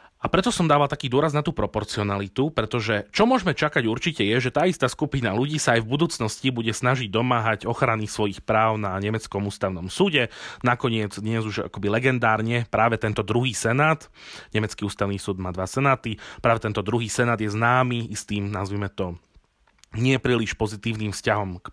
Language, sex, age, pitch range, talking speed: Slovak, male, 30-49, 105-135 Hz, 175 wpm